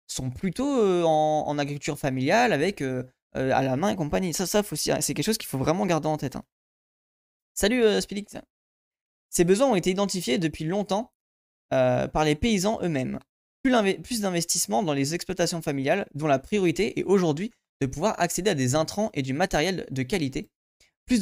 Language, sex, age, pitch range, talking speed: French, male, 20-39, 140-195 Hz, 190 wpm